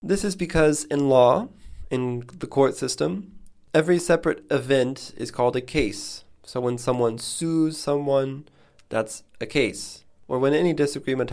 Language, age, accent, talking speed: English, 20-39, American, 150 wpm